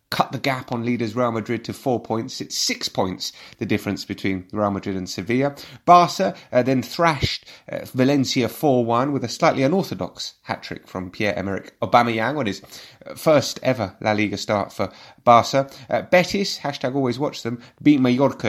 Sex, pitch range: male, 100-135 Hz